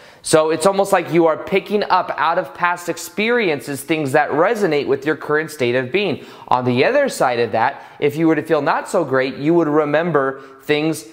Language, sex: English, male